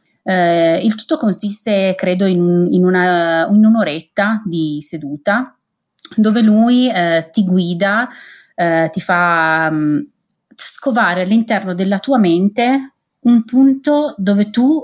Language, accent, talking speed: Italian, native, 100 wpm